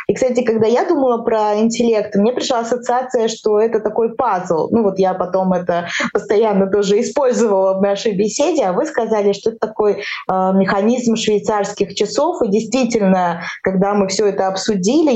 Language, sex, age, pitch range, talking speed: Russian, female, 20-39, 195-235 Hz, 160 wpm